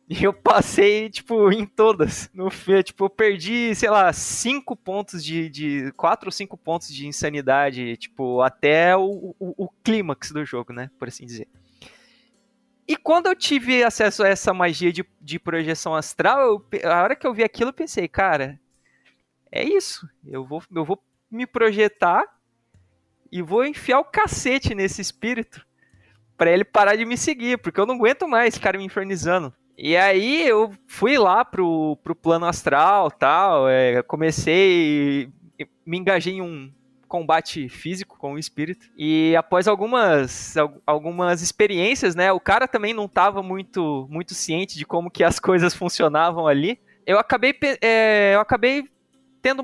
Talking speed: 165 wpm